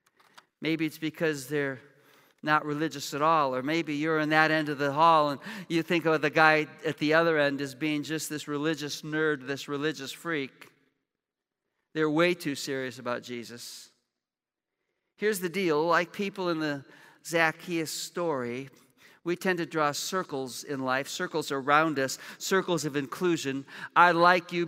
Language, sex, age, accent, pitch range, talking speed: English, male, 50-69, American, 140-165 Hz, 165 wpm